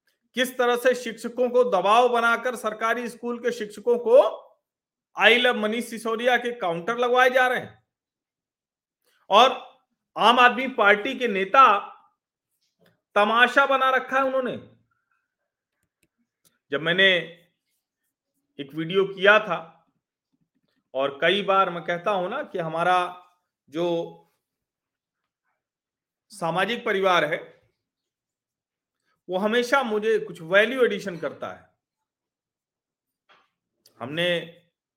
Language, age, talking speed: Hindi, 40-59, 105 wpm